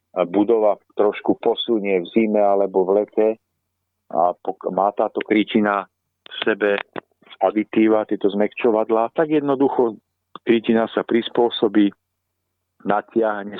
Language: Czech